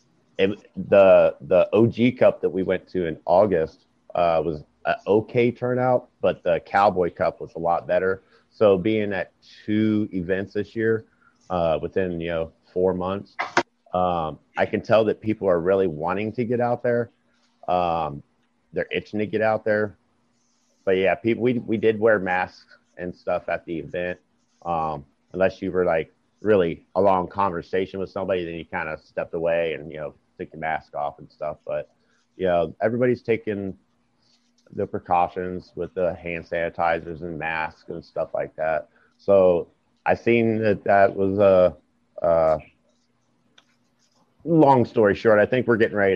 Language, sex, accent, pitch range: English, male, American, 90-110 Hz